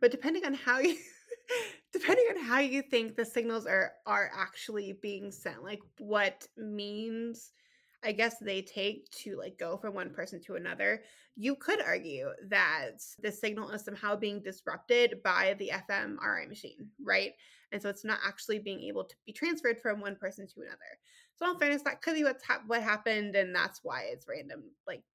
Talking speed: 185 wpm